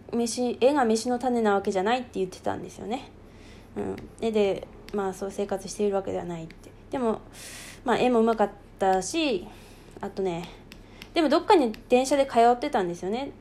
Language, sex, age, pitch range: Japanese, female, 20-39, 195-275 Hz